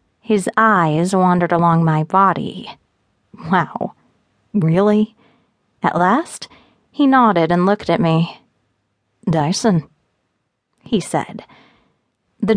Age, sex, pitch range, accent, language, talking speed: 30-49, female, 160-215 Hz, American, English, 95 wpm